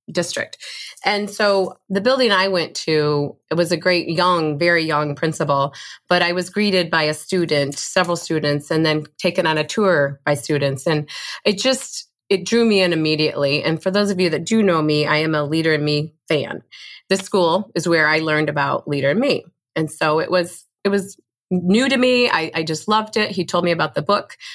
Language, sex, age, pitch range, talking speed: English, female, 30-49, 155-195 Hz, 215 wpm